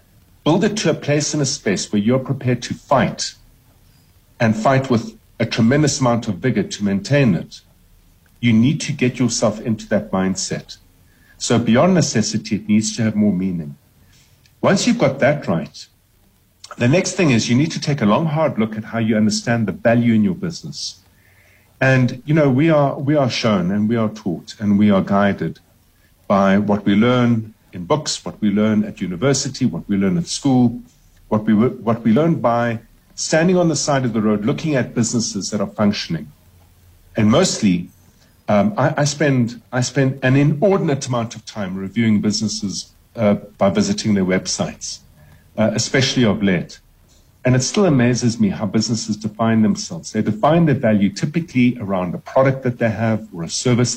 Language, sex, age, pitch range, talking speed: English, male, 50-69, 100-135 Hz, 185 wpm